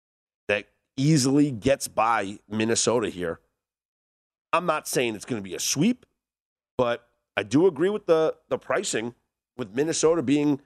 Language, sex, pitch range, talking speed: English, male, 130-175 Hz, 140 wpm